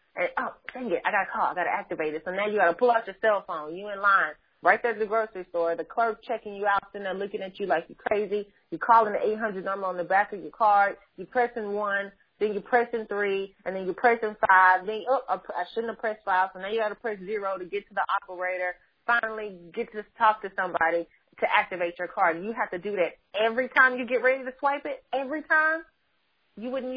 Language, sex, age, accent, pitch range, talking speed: English, female, 30-49, American, 190-230 Hz, 255 wpm